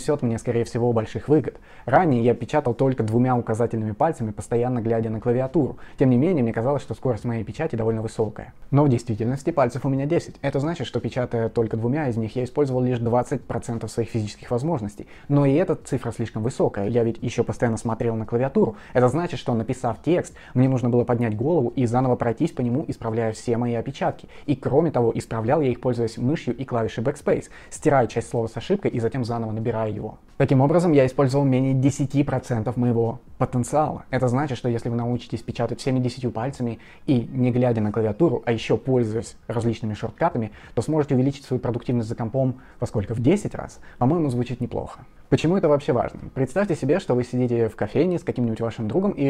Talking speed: 195 wpm